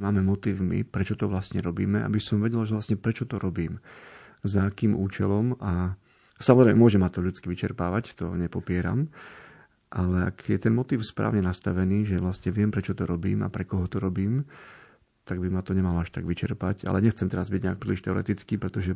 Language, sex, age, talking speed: Slovak, male, 30-49, 195 wpm